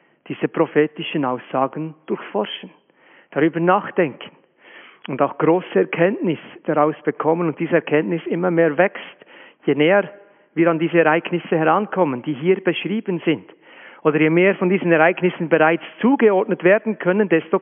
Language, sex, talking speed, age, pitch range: German, male, 135 wpm, 50-69, 150-185 Hz